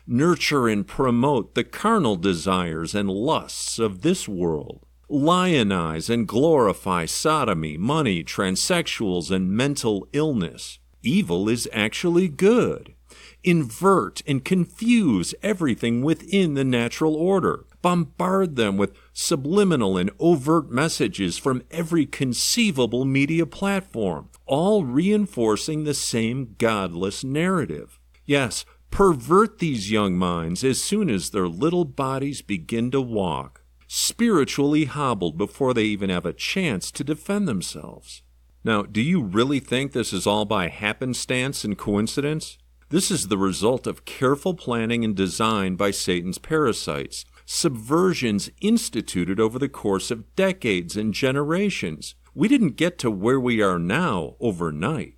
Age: 50-69